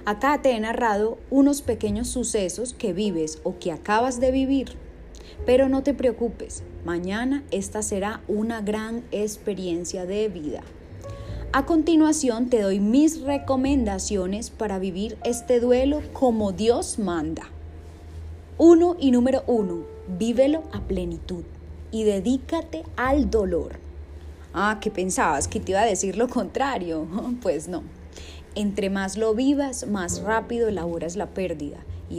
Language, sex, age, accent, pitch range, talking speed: Spanish, female, 10-29, Colombian, 170-240 Hz, 135 wpm